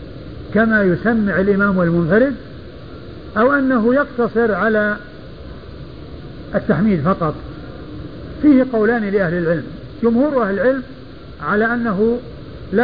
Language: Arabic